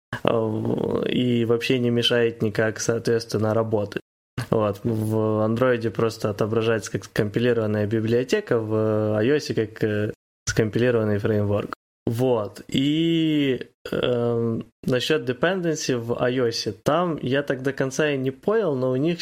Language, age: Ukrainian, 20-39